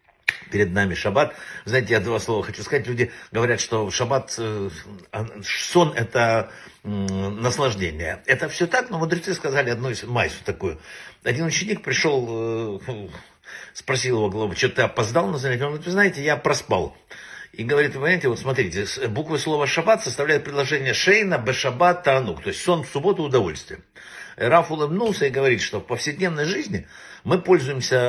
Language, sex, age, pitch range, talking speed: Russian, male, 60-79, 115-165 Hz, 145 wpm